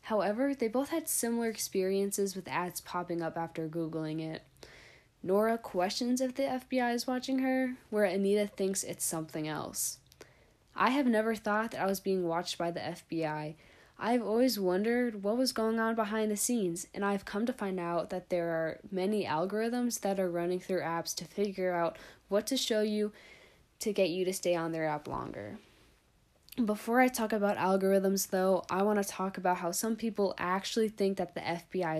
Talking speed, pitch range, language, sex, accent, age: 190 wpm, 175-220 Hz, English, female, American, 10-29